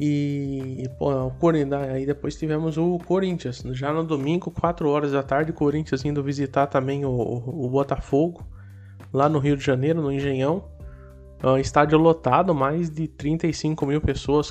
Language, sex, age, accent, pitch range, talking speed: Portuguese, male, 20-39, Brazilian, 135-160 Hz, 140 wpm